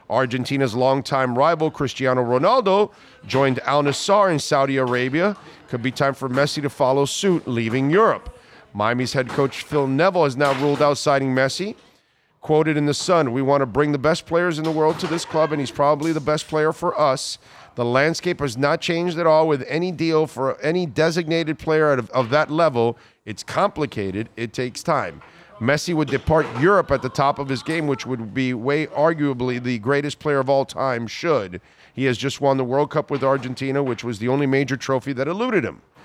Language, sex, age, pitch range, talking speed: English, male, 40-59, 130-155 Hz, 200 wpm